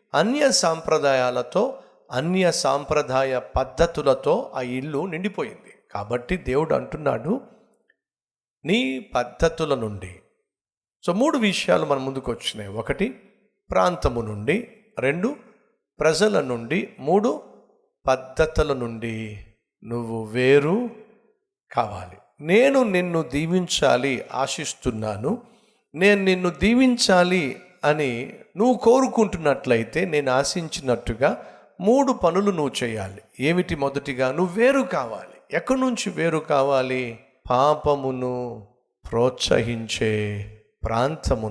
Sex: male